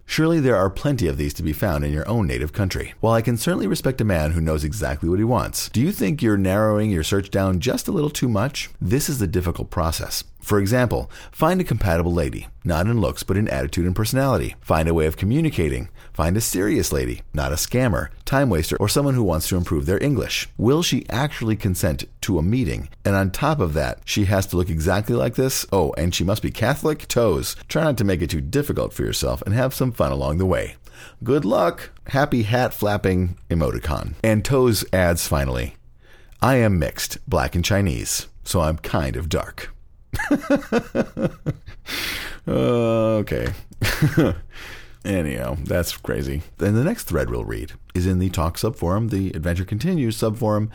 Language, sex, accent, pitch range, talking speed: English, male, American, 85-120 Hz, 195 wpm